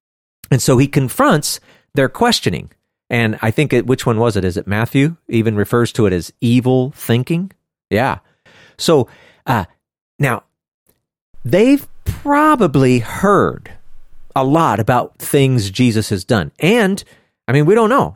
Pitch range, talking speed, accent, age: 110-170 Hz, 140 wpm, American, 40-59